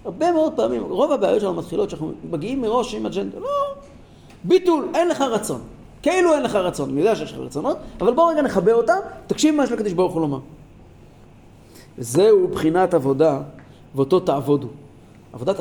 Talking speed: 165 wpm